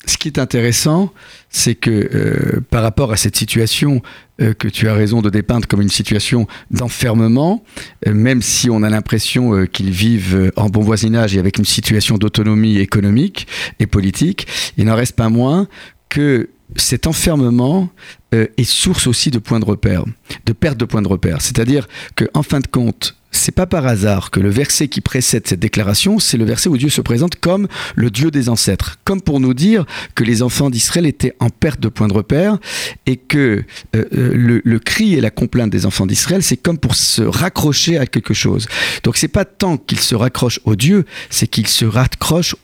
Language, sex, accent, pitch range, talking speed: French, male, French, 110-140 Hz, 200 wpm